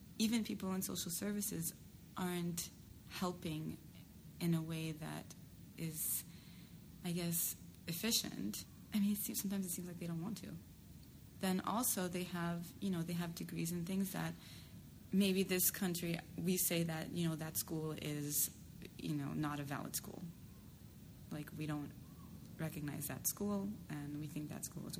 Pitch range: 155-190 Hz